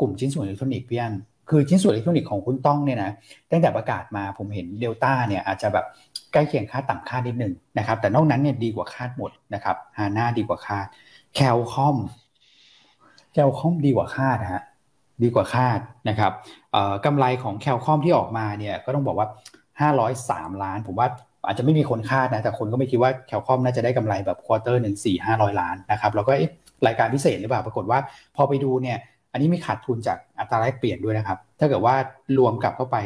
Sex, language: male, Thai